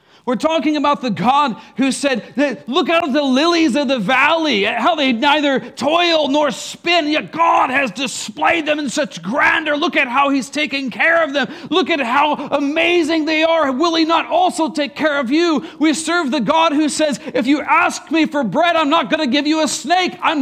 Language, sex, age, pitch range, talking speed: English, male, 40-59, 275-320 Hz, 210 wpm